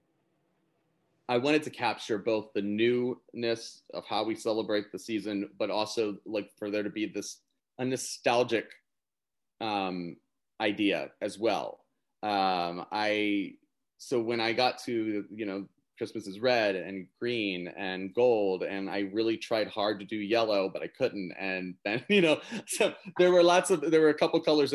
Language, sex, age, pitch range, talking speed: English, male, 30-49, 105-140 Hz, 165 wpm